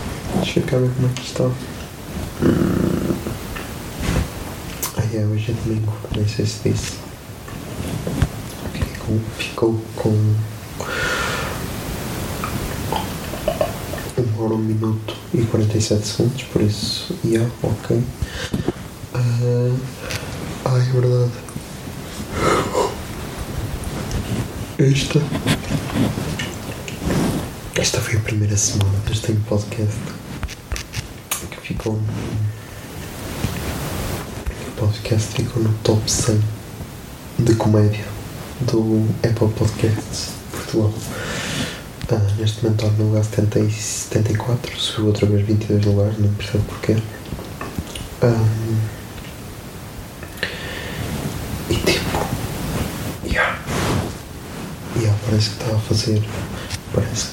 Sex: male